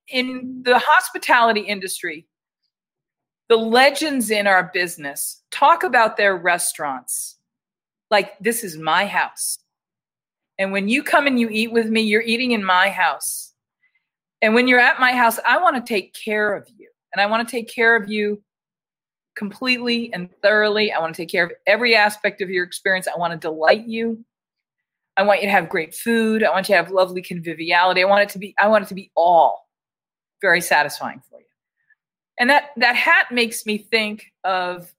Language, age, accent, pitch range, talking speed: English, 40-59, American, 185-235 Hz, 180 wpm